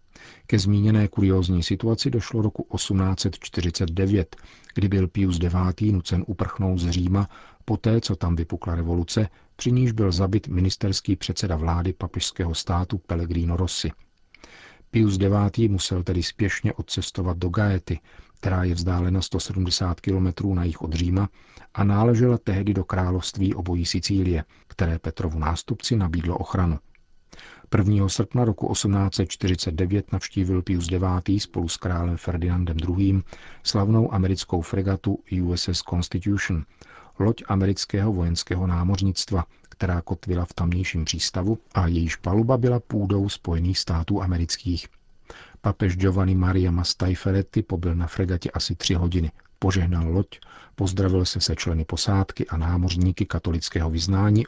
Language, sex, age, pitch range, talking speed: Czech, male, 40-59, 85-100 Hz, 125 wpm